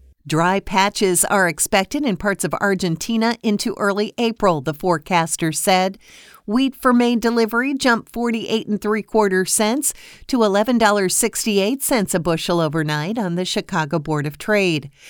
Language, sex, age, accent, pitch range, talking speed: English, female, 50-69, American, 170-220 Hz, 155 wpm